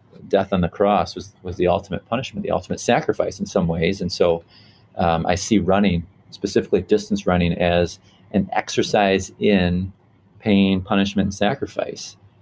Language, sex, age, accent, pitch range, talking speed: English, male, 30-49, American, 90-100 Hz, 155 wpm